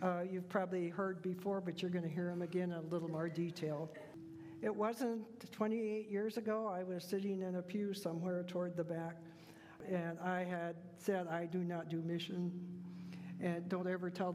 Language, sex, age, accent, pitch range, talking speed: English, male, 60-79, American, 170-190 Hz, 190 wpm